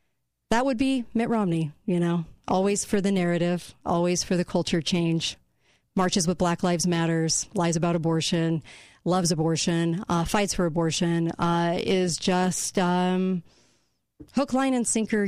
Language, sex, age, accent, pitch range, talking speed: English, female, 40-59, American, 170-225 Hz, 150 wpm